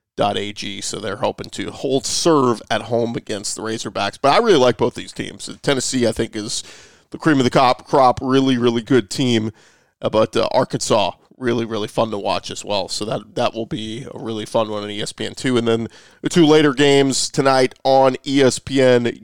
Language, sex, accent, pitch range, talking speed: English, male, American, 115-140 Hz, 205 wpm